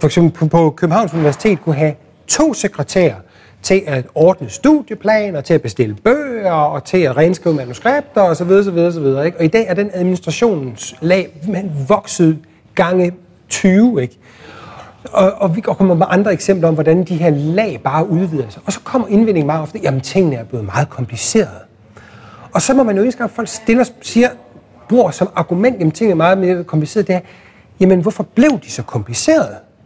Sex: male